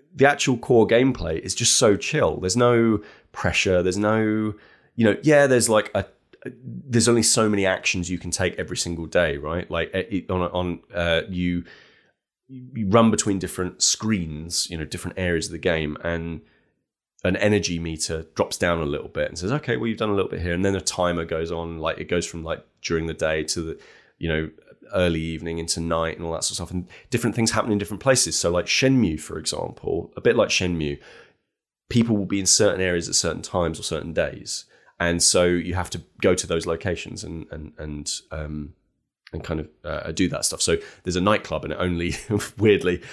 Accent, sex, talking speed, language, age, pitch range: British, male, 210 wpm, English, 30-49, 85-110 Hz